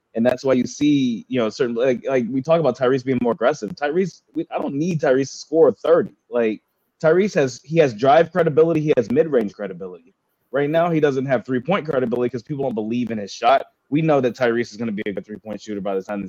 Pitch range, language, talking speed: 115-155 Hz, English, 245 wpm